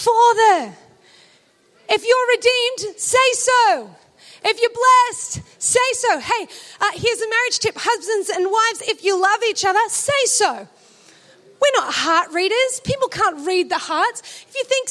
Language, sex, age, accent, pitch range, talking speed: English, female, 30-49, Australian, 285-435 Hz, 155 wpm